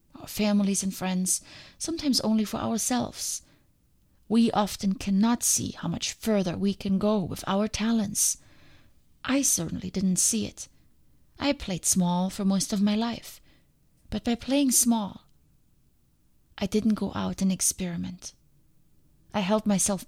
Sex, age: female, 30-49